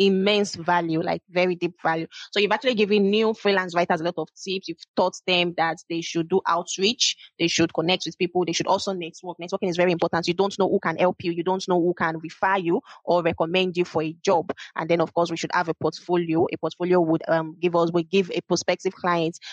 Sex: female